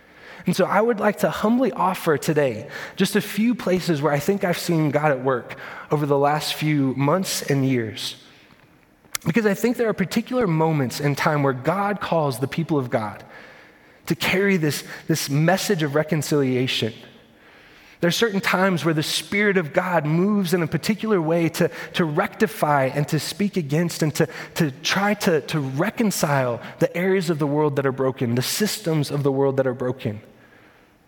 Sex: male